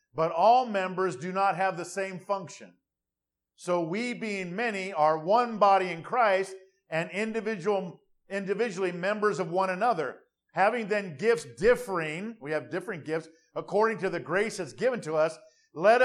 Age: 50-69